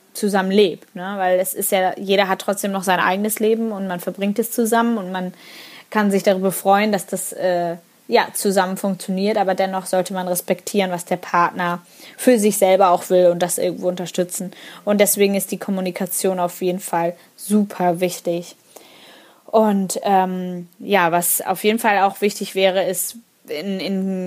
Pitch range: 185-220 Hz